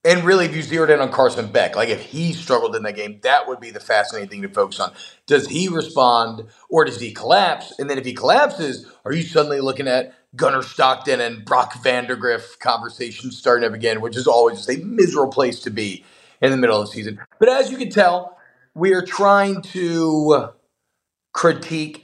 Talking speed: 205 wpm